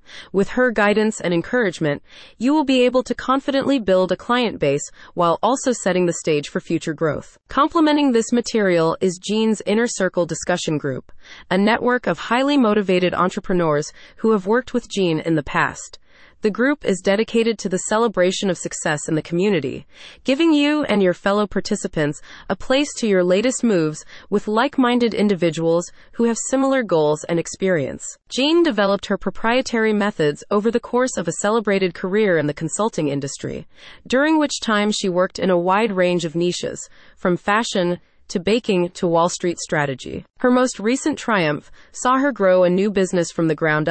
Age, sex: 30-49, female